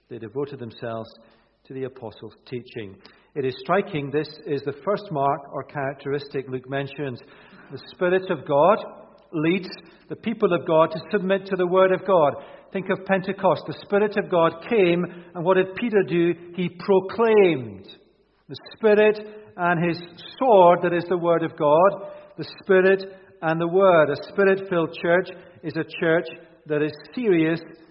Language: English